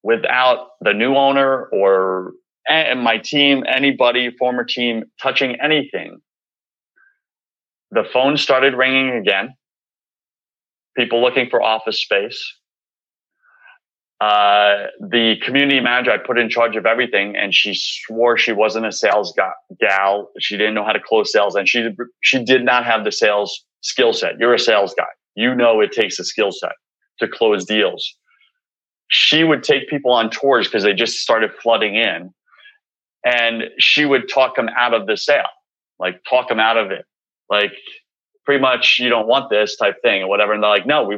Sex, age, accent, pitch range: male, 30-49, American, 115-145 Hz